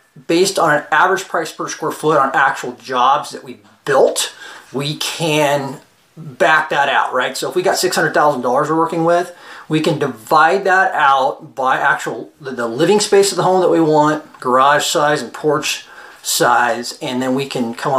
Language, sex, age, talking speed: English, male, 30-49, 185 wpm